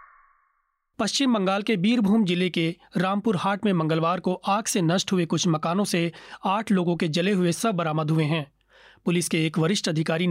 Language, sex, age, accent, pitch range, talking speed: Hindi, male, 30-49, native, 165-205 Hz, 185 wpm